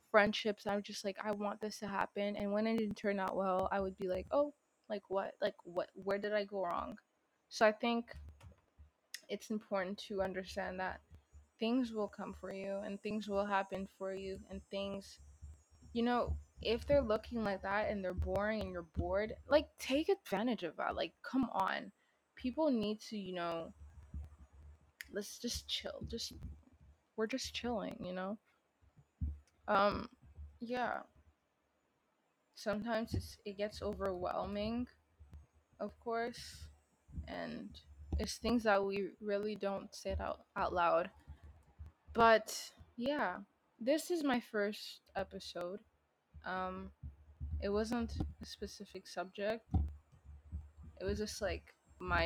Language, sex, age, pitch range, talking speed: English, female, 20-39, 175-220 Hz, 145 wpm